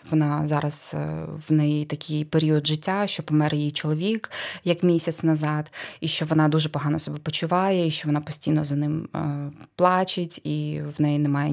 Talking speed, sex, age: 170 wpm, female, 20-39